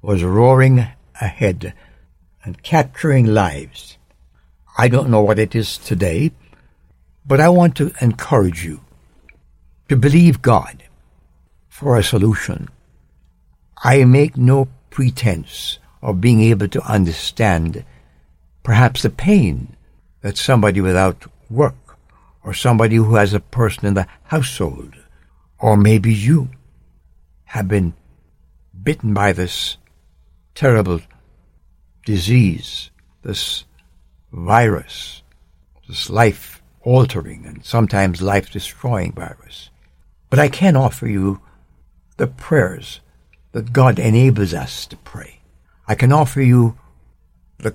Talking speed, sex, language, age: 110 wpm, male, English, 60-79